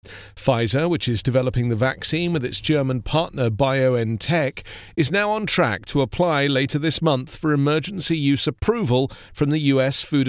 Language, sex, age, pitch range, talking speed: English, male, 40-59, 120-165 Hz, 165 wpm